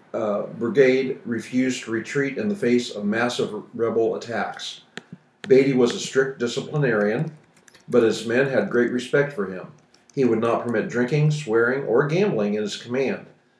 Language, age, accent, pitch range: English, 50-69, American, 115-145 Hz